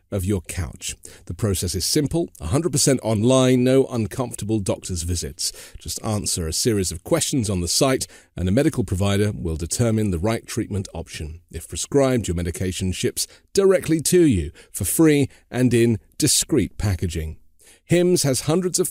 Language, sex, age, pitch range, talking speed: English, male, 40-59, 90-135 Hz, 160 wpm